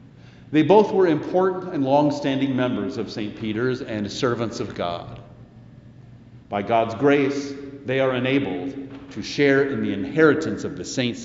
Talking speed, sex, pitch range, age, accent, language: 150 wpm, male, 120-160 Hz, 50-69, American, English